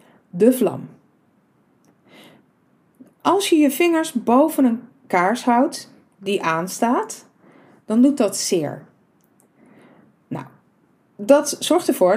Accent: Dutch